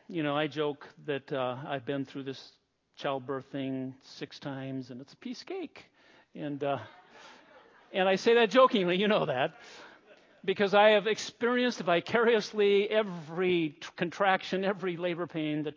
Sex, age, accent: male, 50-69, American